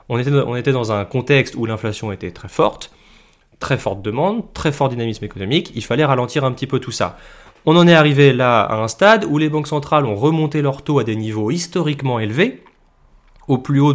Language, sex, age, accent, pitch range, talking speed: French, male, 20-39, French, 110-150 Hz, 220 wpm